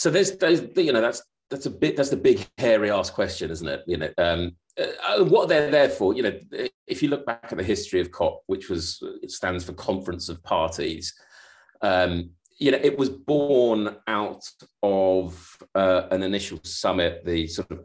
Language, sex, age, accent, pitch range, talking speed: English, male, 30-49, British, 90-110 Hz, 195 wpm